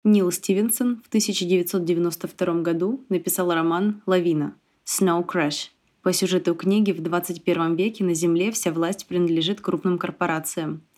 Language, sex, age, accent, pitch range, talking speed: Russian, female, 20-39, native, 165-190 Hz, 125 wpm